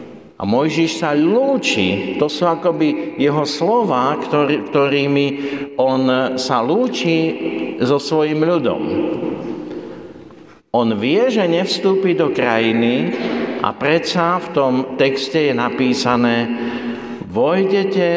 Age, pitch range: 60-79, 120-165 Hz